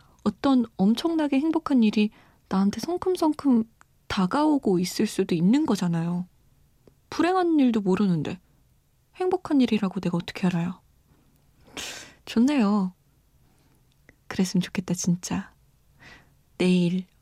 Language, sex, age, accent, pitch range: Korean, female, 20-39, native, 185-245 Hz